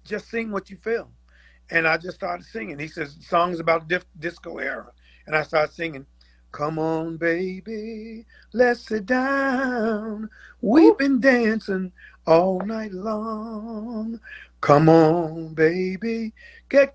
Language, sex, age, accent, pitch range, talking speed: English, male, 50-69, American, 140-215 Hz, 130 wpm